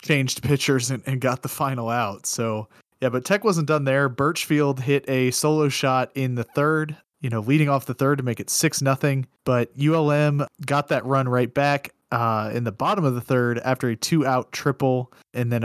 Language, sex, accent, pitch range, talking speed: English, male, American, 120-150 Hz, 205 wpm